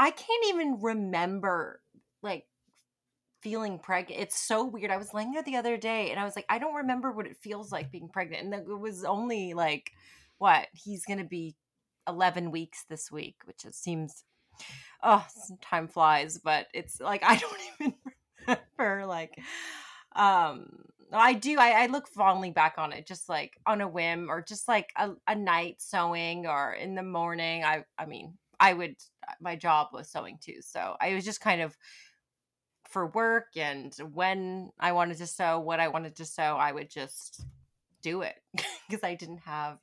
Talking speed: 185 wpm